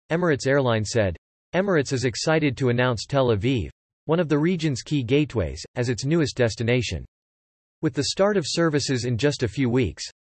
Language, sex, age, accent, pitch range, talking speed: English, male, 40-59, American, 115-150 Hz, 175 wpm